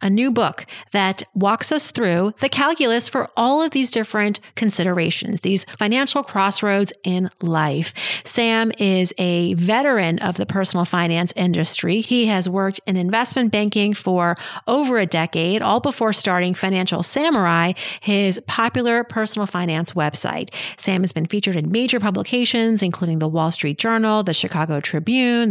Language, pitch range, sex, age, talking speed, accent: English, 180-235 Hz, female, 40-59, 150 wpm, American